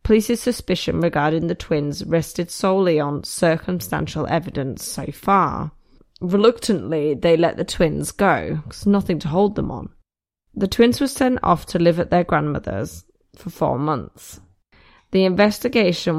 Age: 20-39